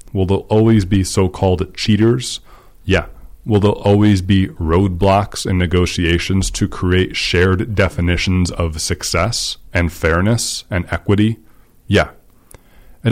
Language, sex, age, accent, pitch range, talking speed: English, male, 30-49, American, 85-110 Hz, 120 wpm